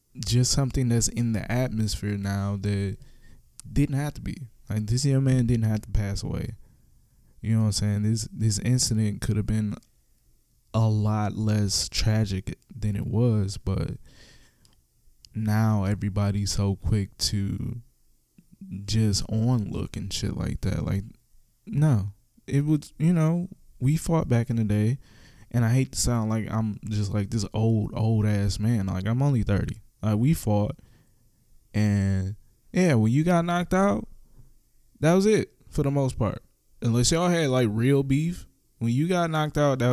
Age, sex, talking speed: 20-39, male, 165 wpm